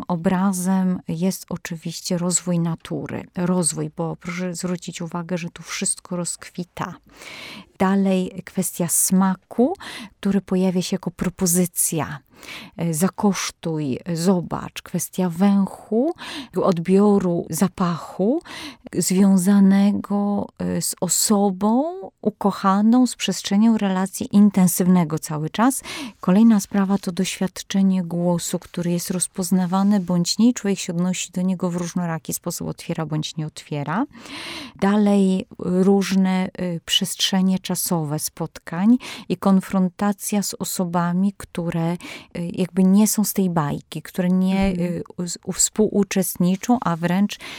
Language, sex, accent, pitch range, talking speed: Polish, female, native, 175-200 Hz, 100 wpm